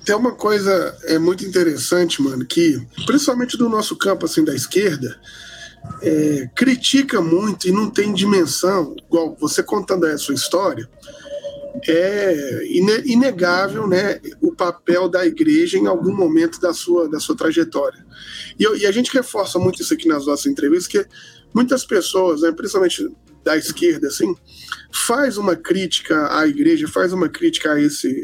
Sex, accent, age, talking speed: male, Brazilian, 20-39, 155 wpm